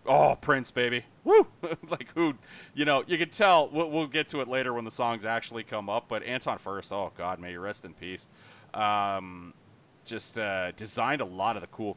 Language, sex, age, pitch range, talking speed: English, male, 30-49, 95-125 Hz, 210 wpm